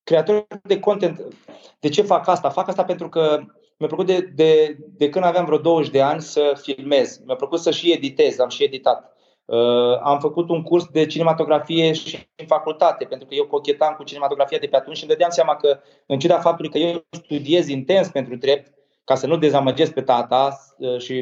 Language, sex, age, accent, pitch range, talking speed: Romanian, male, 20-39, native, 145-175 Hz, 205 wpm